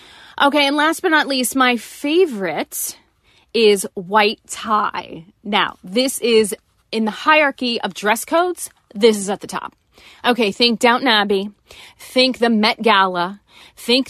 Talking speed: 145 wpm